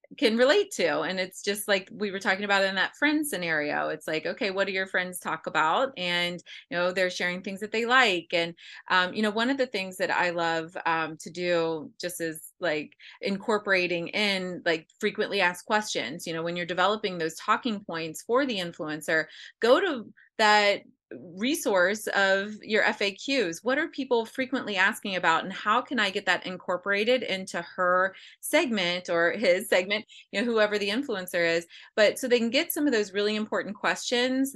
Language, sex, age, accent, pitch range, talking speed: English, female, 30-49, American, 185-250 Hz, 190 wpm